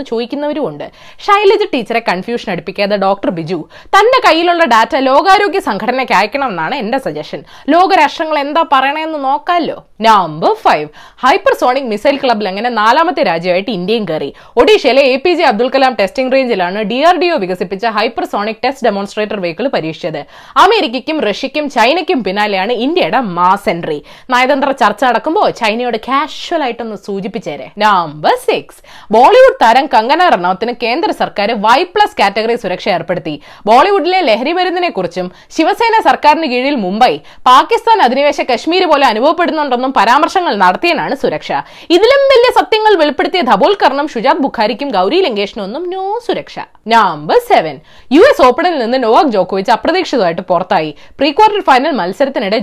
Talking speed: 70 wpm